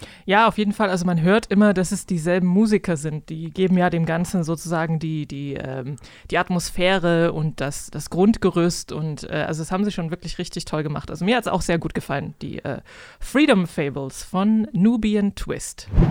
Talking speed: 200 wpm